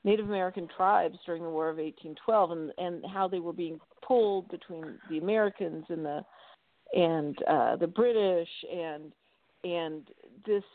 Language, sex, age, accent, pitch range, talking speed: English, female, 50-69, American, 170-205 Hz, 150 wpm